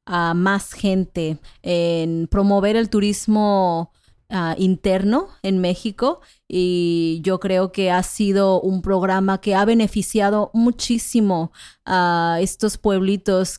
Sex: female